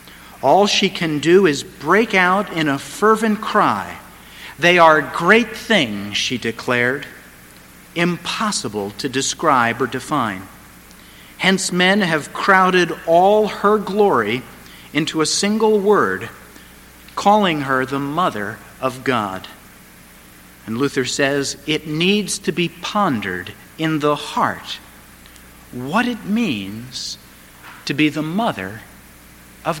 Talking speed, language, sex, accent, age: 120 wpm, English, male, American, 50-69